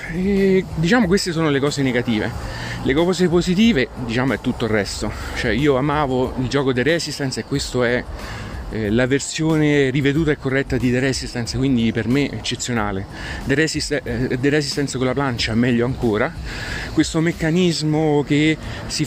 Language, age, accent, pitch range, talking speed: Italian, 30-49, native, 120-150 Hz, 170 wpm